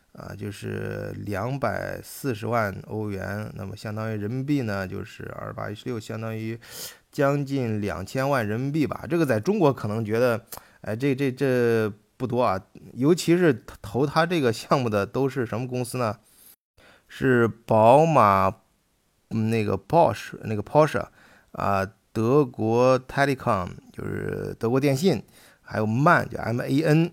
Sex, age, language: male, 20-39, Chinese